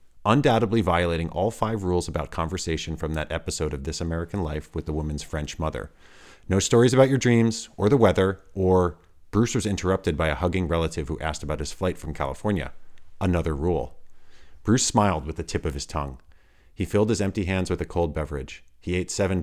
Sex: male